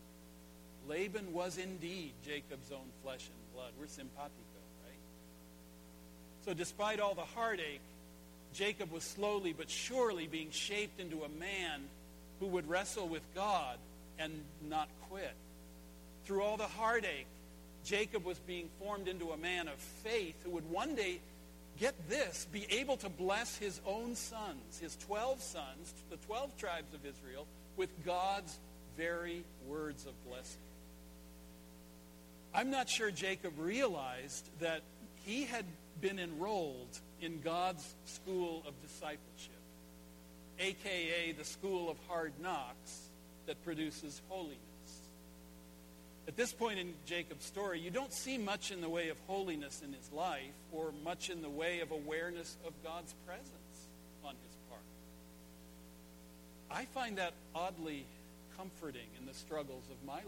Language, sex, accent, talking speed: English, male, American, 140 wpm